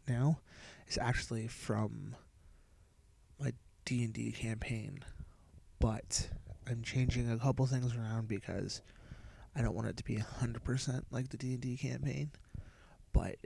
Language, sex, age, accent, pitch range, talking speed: English, male, 20-39, American, 100-130 Hz, 120 wpm